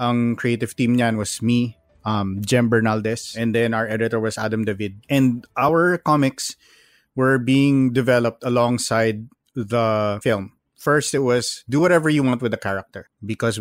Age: 20-39